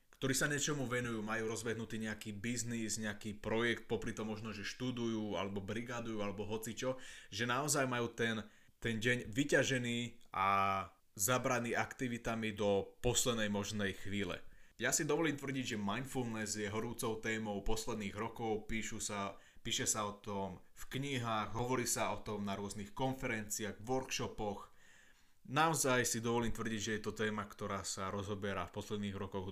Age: 20-39